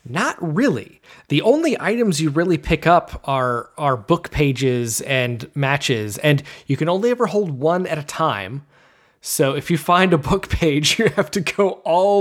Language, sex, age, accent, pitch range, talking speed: English, male, 20-39, American, 125-155 Hz, 180 wpm